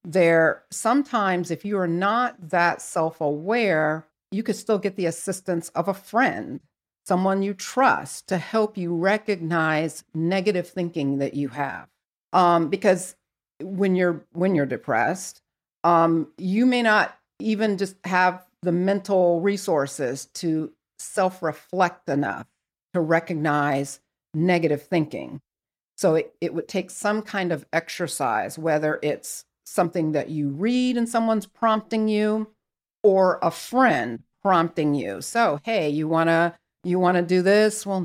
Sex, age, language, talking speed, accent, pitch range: female, 50-69, English, 140 wpm, American, 160-200 Hz